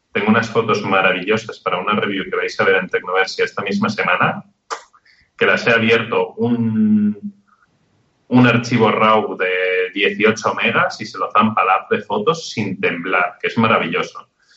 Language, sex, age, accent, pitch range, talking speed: Spanish, male, 30-49, Spanish, 110-150 Hz, 165 wpm